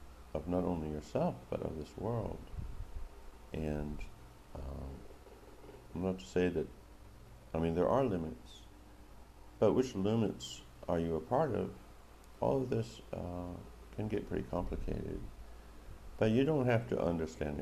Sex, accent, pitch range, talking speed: male, American, 75-95 Hz, 145 wpm